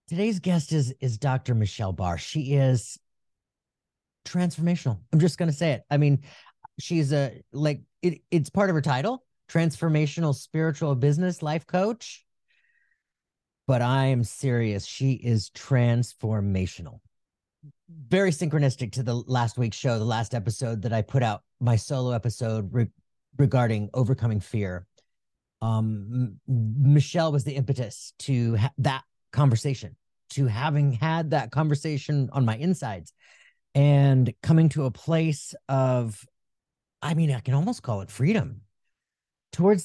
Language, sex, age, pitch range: English, male, 30-49, 120-160 Hz